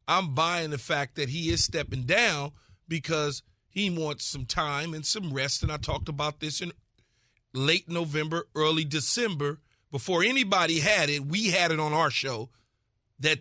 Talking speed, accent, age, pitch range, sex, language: 170 wpm, American, 40-59, 135-170 Hz, male, English